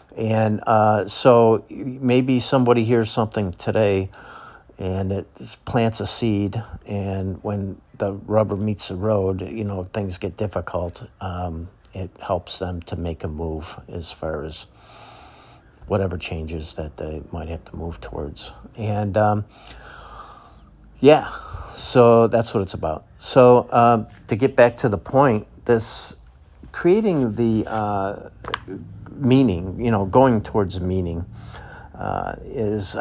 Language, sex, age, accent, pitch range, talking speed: English, male, 50-69, American, 85-110 Hz, 135 wpm